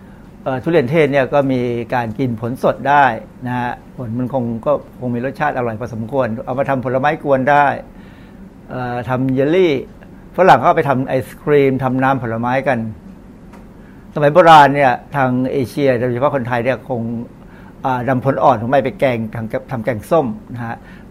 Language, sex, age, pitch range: Thai, male, 60-79, 125-150 Hz